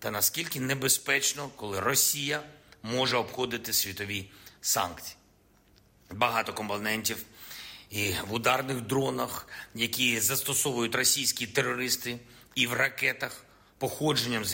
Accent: native